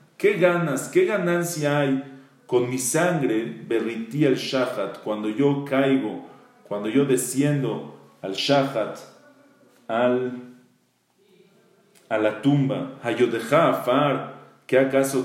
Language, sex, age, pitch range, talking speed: English, male, 40-59, 115-160 Hz, 105 wpm